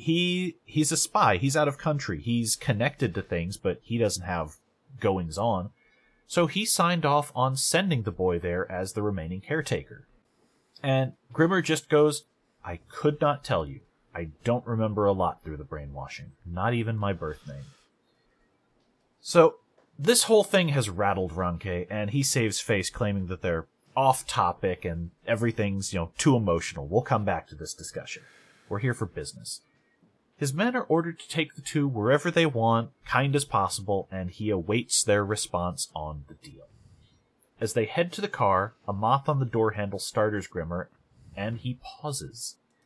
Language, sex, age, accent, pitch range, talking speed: English, male, 30-49, American, 100-145 Hz, 170 wpm